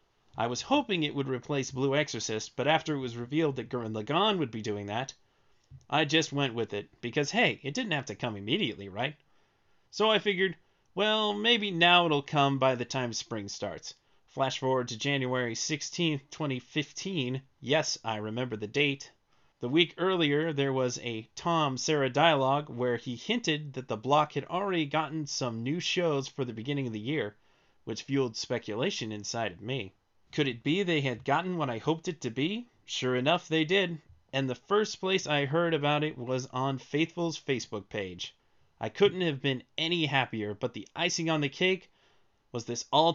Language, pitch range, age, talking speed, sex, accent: English, 125-160 Hz, 30-49, 185 wpm, male, American